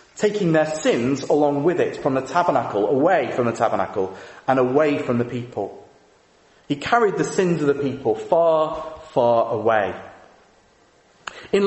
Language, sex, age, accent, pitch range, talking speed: English, male, 30-49, British, 130-170 Hz, 150 wpm